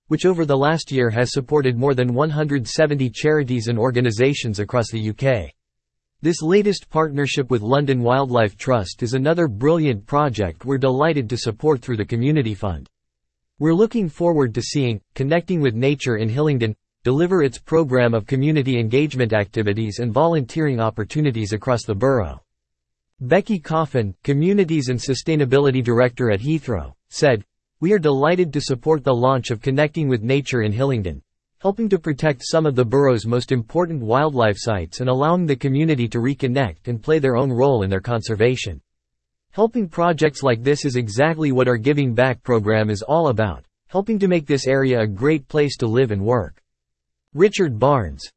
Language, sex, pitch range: English, male, 115-150 Hz